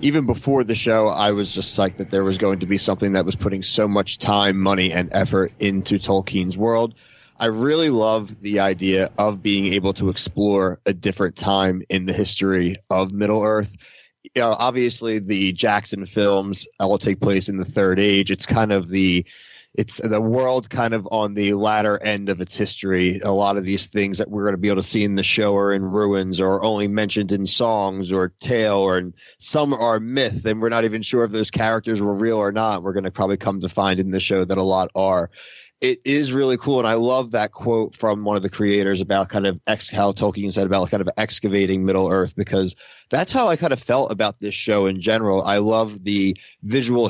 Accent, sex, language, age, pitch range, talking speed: American, male, English, 30-49, 95-110 Hz, 215 wpm